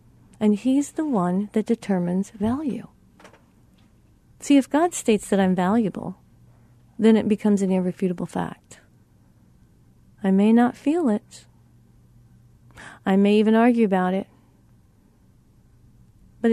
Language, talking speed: English, 115 wpm